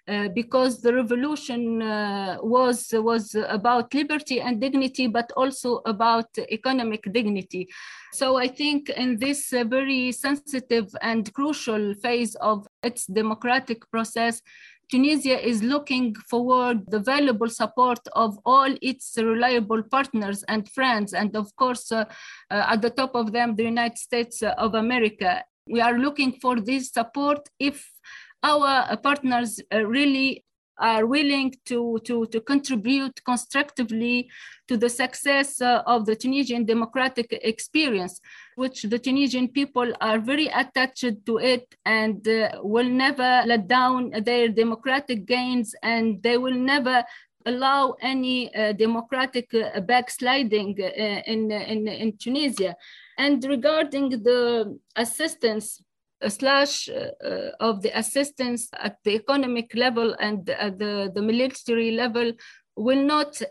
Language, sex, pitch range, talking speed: English, female, 225-260 Hz, 125 wpm